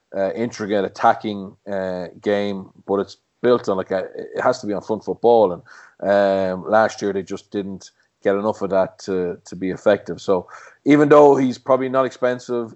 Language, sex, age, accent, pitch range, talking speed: English, male, 30-49, Irish, 100-115 Hz, 190 wpm